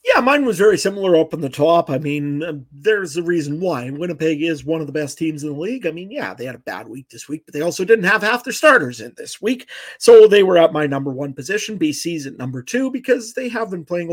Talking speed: 270 wpm